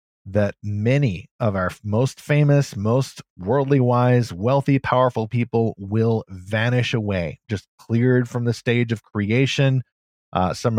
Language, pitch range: English, 105-130 Hz